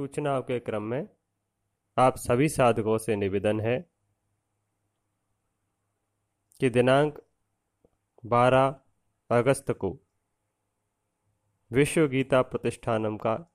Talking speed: 80 wpm